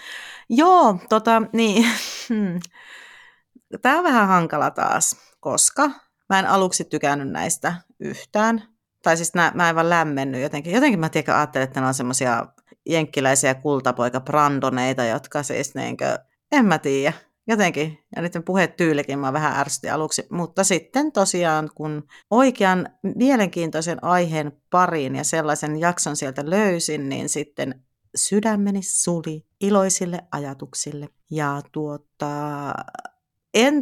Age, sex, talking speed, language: 30-49, female, 125 wpm, Finnish